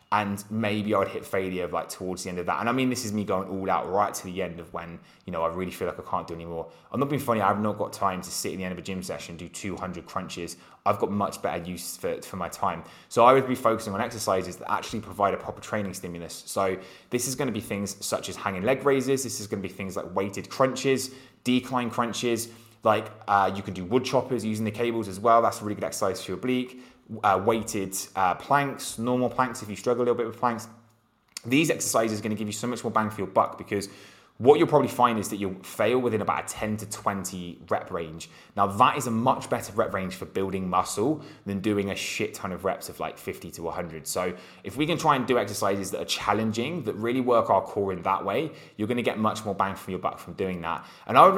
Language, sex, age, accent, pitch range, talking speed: English, male, 20-39, British, 95-120 Hz, 260 wpm